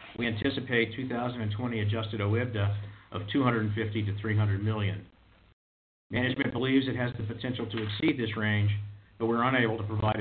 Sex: male